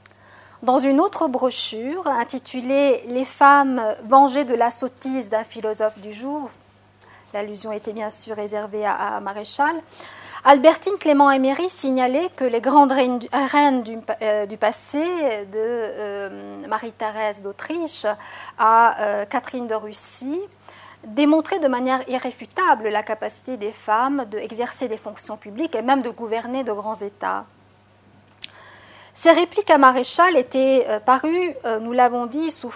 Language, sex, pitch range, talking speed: French, female, 215-285 Hz, 135 wpm